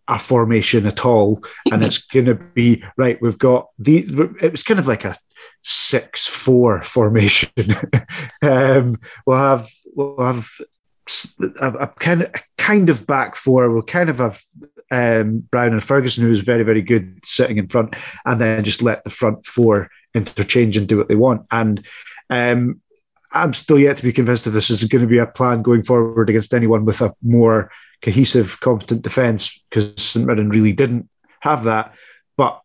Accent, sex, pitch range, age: British, male, 110-135 Hz, 30-49